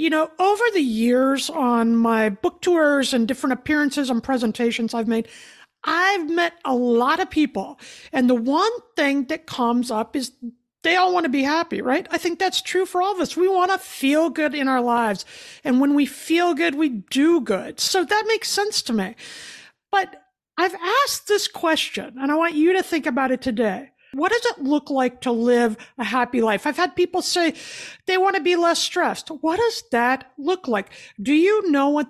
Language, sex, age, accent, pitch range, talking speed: English, female, 50-69, American, 245-335 Hz, 205 wpm